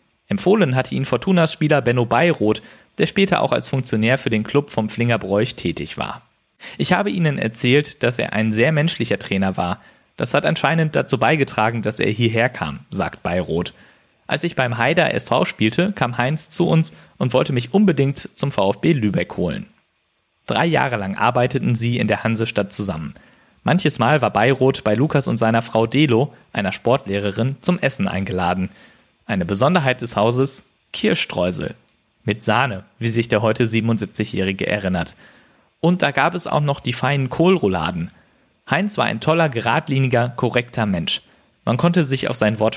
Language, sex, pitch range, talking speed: German, male, 110-155 Hz, 165 wpm